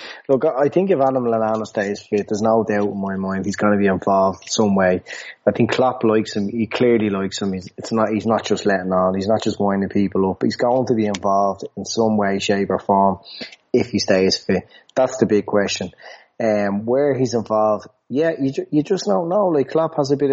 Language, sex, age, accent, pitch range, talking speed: English, male, 20-39, Irish, 105-115 Hz, 230 wpm